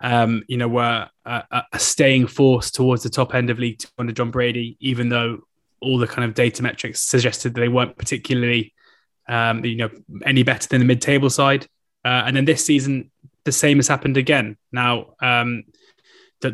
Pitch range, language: 120-135 Hz, English